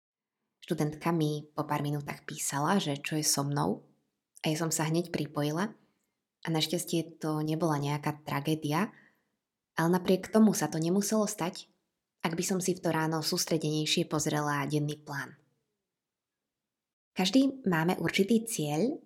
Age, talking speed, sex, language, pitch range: 20-39, 135 wpm, female, Slovak, 155-190 Hz